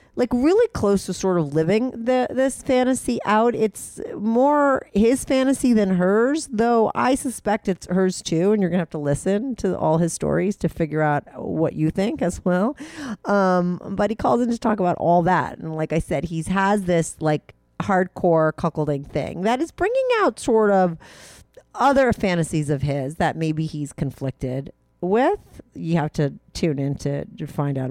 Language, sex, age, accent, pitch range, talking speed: English, female, 40-59, American, 155-225 Hz, 185 wpm